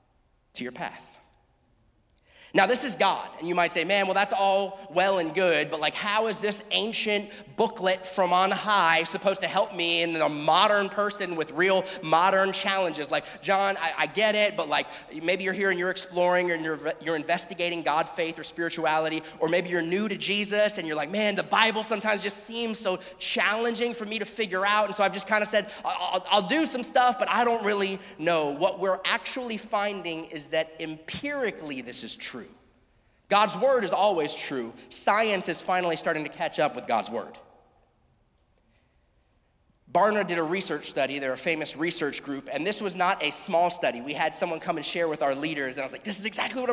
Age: 30-49